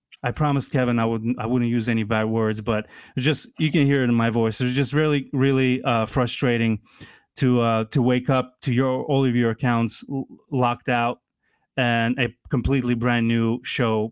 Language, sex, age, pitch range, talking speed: English, male, 30-49, 115-140 Hz, 195 wpm